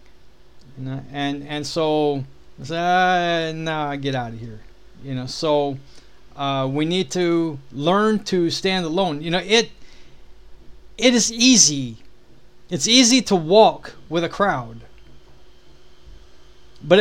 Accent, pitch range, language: American, 125-190 Hz, English